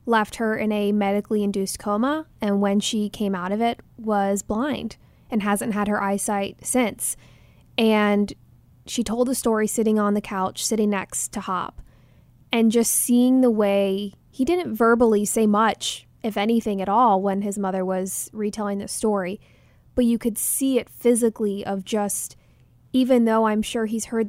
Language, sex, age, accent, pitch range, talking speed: English, female, 20-39, American, 200-230 Hz, 175 wpm